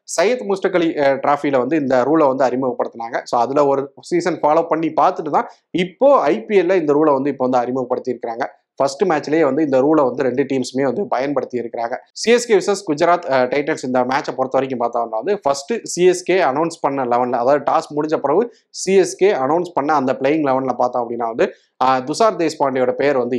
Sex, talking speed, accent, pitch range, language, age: male, 175 wpm, native, 130-170 Hz, Tamil, 30-49